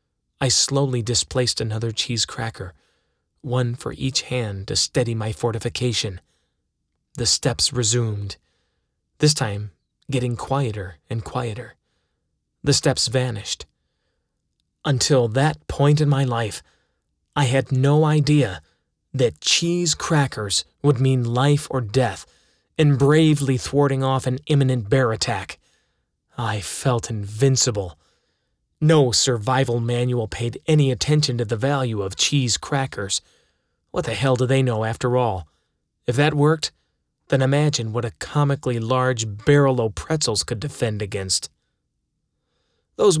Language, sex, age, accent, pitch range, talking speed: English, male, 30-49, American, 110-140 Hz, 125 wpm